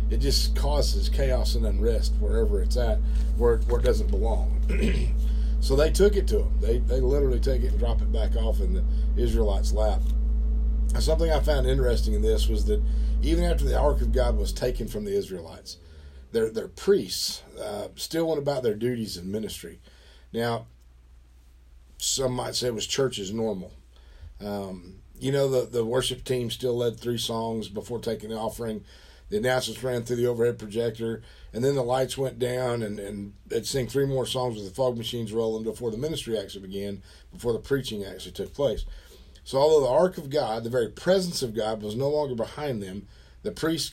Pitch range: 75-125 Hz